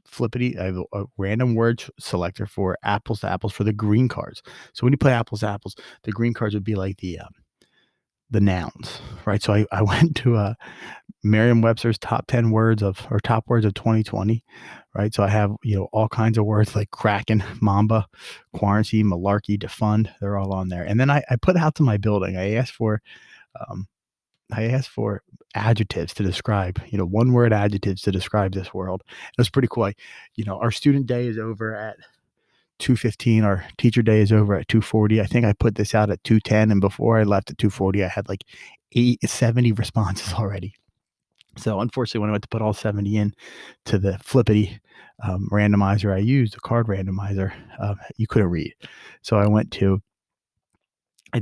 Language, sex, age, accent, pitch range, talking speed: English, male, 30-49, American, 100-115 Hz, 200 wpm